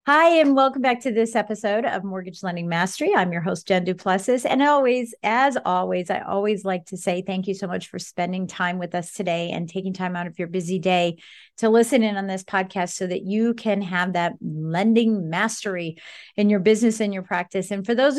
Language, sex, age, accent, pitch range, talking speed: English, female, 40-59, American, 180-220 Hz, 220 wpm